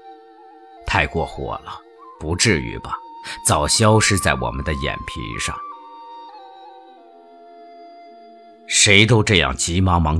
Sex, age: male, 50-69